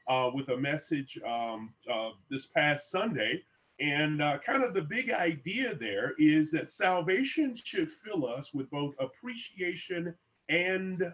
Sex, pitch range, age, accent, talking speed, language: male, 130-175 Hz, 30-49, American, 145 wpm, English